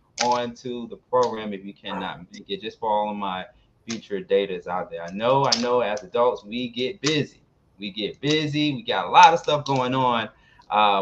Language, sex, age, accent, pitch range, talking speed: English, male, 20-39, American, 120-170 Hz, 210 wpm